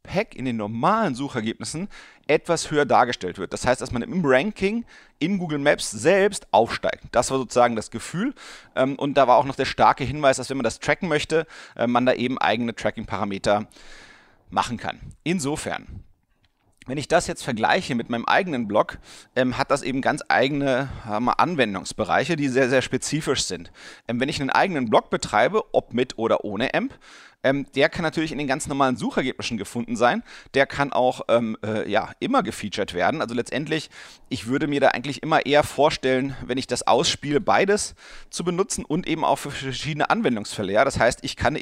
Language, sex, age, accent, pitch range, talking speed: German, male, 30-49, German, 120-150 Hz, 180 wpm